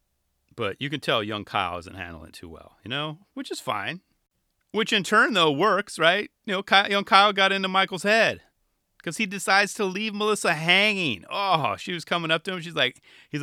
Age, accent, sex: 30-49, American, male